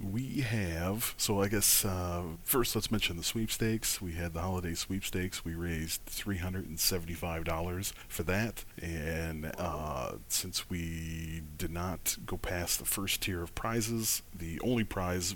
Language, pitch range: English, 80-95 Hz